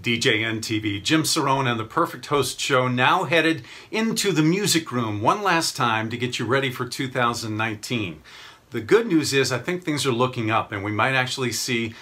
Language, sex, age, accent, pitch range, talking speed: English, male, 50-69, American, 115-140 Hz, 195 wpm